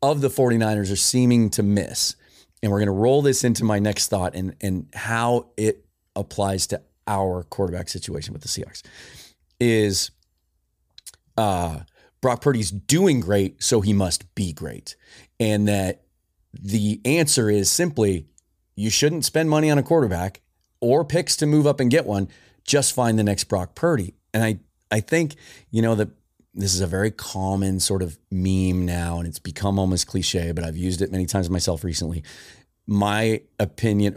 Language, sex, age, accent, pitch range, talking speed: English, male, 30-49, American, 95-115 Hz, 170 wpm